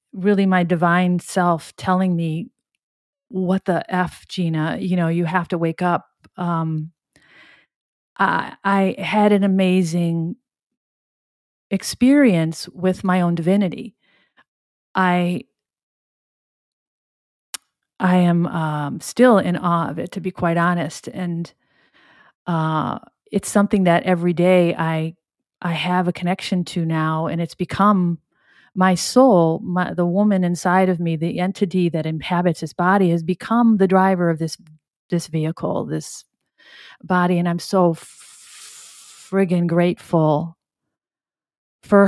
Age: 40-59